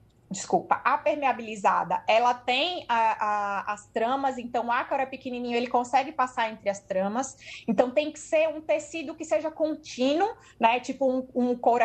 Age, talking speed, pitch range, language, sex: 20-39, 170 wpm, 260-330 Hz, Portuguese, female